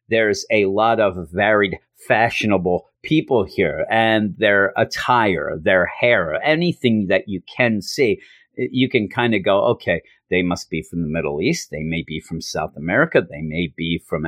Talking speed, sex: 170 wpm, male